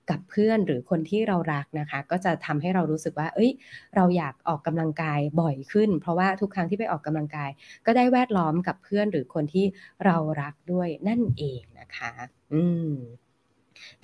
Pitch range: 155-190 Hz